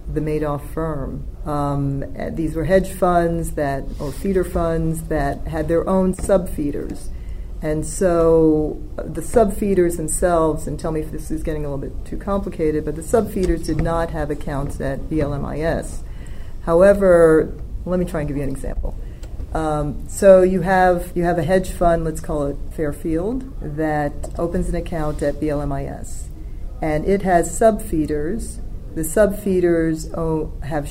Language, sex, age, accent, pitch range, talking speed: English, female, 40-59, American, 145-175 Hz, 155 wpm